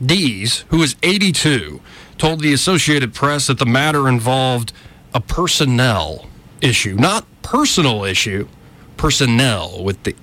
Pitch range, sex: 105-145 Hz, male